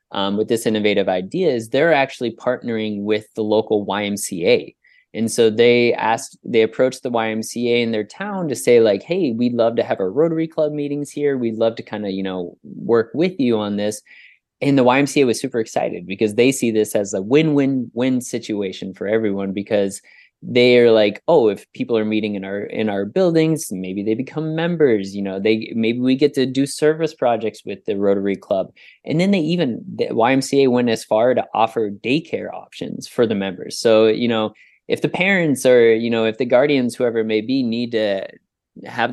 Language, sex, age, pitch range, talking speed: English, male, 20-39, 105-135 Hz, 205 wpm